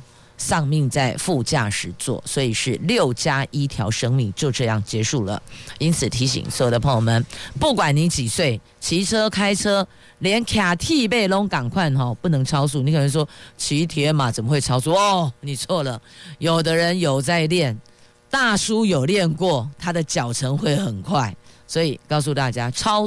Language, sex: Chinese, female